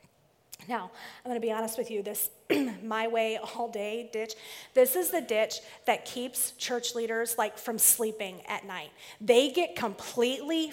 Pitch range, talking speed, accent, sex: 220-265 Hz, 170 wpm, American, female